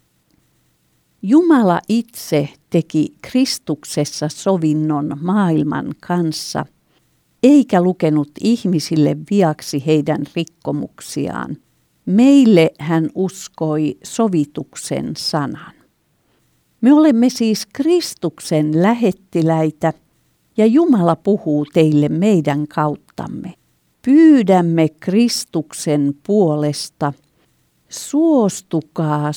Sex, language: female, Finnish